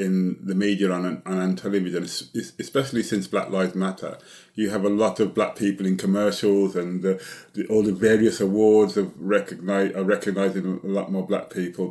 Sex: male